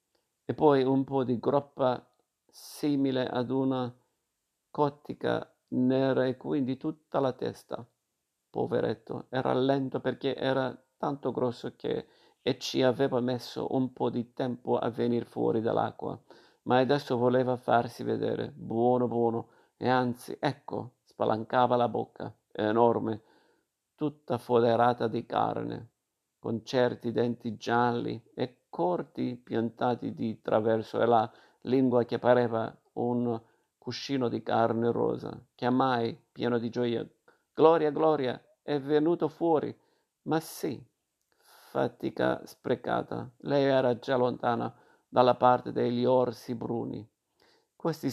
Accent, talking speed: native, 120 wpm